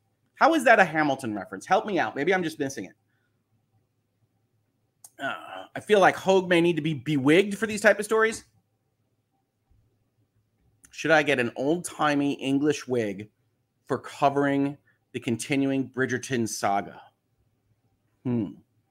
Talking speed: 135 wpm